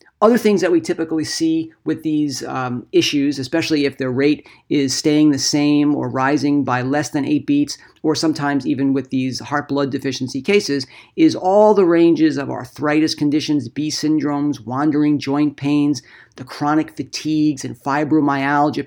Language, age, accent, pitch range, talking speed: English, 50-69, American, 140-160 Hz, 160 wpm